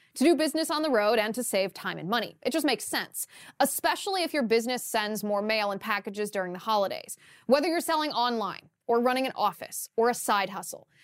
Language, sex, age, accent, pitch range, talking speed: English, female, 20-39, American, 210-280 Hz, 215 wpm